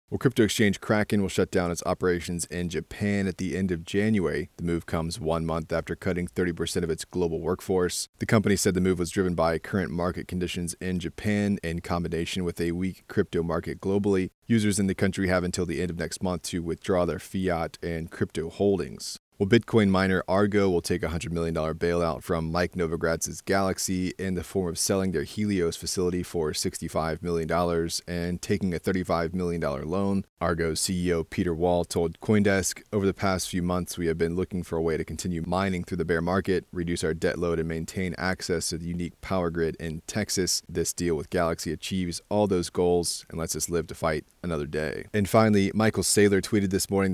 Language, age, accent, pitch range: English, 30-49, American, 85-95 Hz